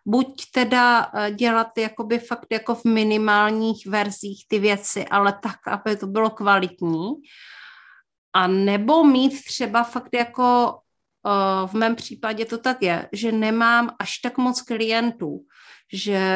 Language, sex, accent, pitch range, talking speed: Czech, female, native, 195-230 Hz, 130 wpm